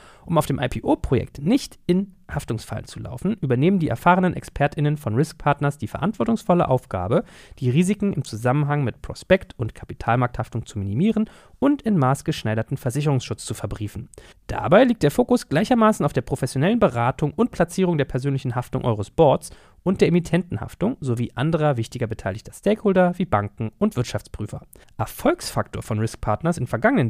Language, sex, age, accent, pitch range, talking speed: German, male, 40-59, German, 120-170 Hz, 155 wpm